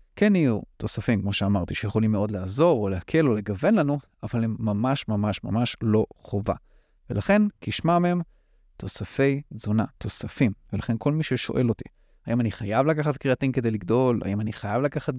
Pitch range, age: 110-145 Hz, 30-49